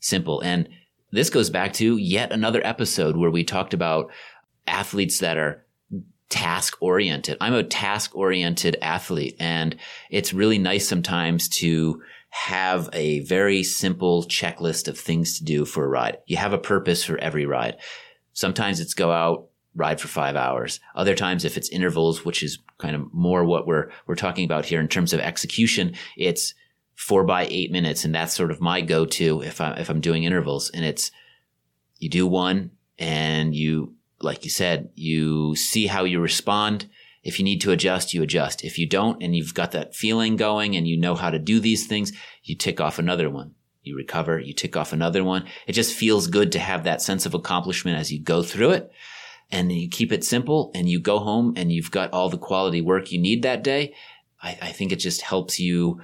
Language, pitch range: English, 80-95 Hz